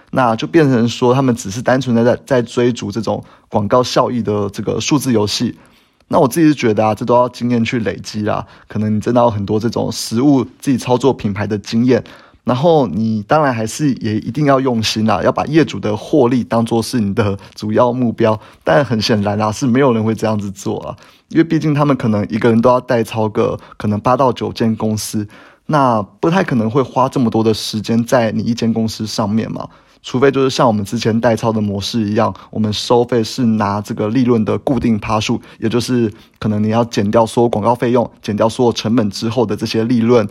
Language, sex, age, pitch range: Chinese, male, 20-39, 110-125 Hz